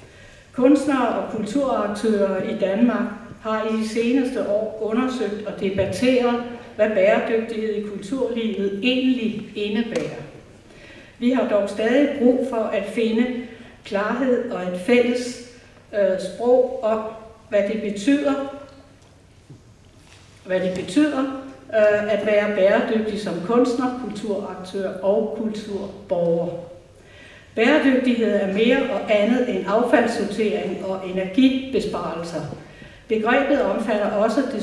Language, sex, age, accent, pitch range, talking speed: Danish, female, 60-79, native, 195-245 Hz, 100 wpm